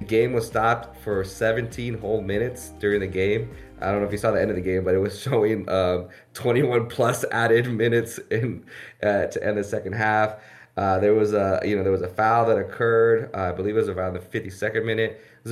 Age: 20-39